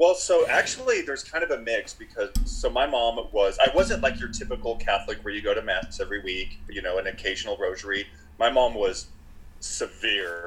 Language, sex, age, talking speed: English, male, 30-49, 200 wpm